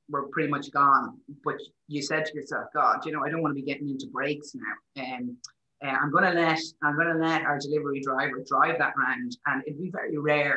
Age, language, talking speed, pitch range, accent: 30-49, English, 240 wpm, 140-170 Hz, Irish